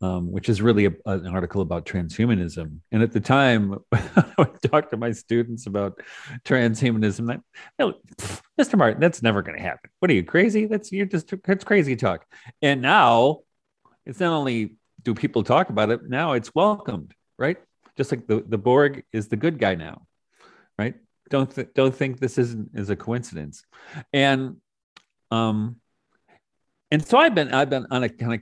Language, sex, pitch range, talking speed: English, male, 95-130 Hz, 165 wpm